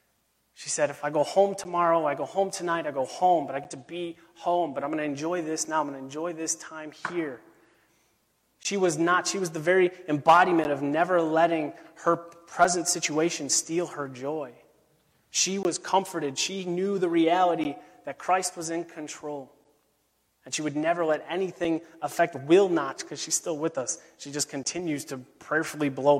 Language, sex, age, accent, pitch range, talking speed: English, male, 30-49, American, 140-170 Hz, 190 wpm